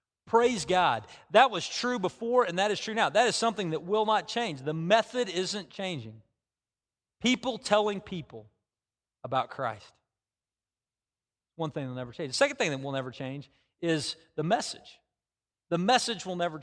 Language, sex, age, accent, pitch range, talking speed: English, male, 40-59, American, 130-195 Hz, 170 wpm